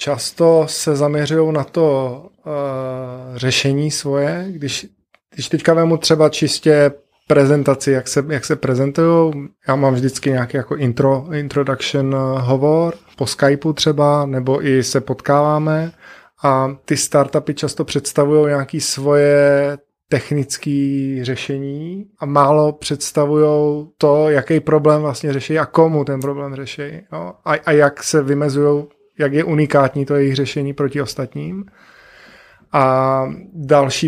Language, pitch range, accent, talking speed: Czech, 140-150 Hz, native, 125 wpm